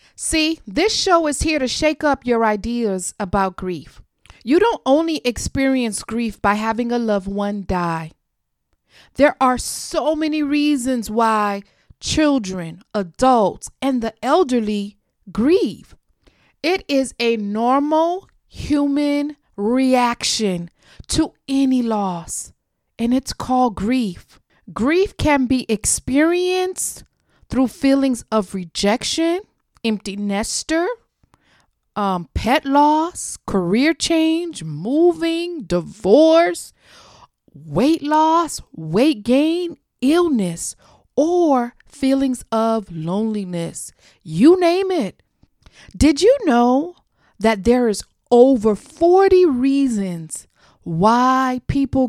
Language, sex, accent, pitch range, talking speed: English, female, American, 215-300 Hz, 100 wpm